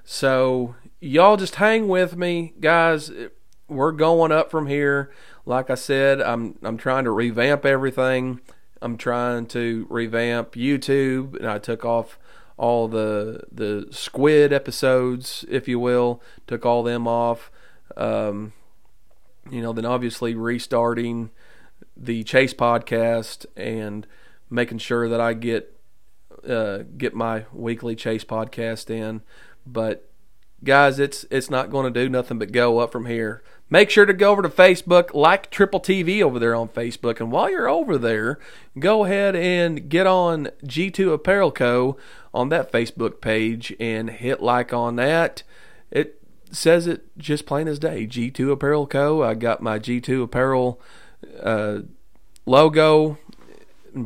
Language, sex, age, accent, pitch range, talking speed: English, male, 40-59, American, 115-145 Hz, 145 wpm